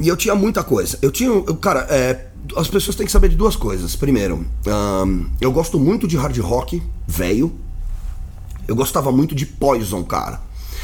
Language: Portuguese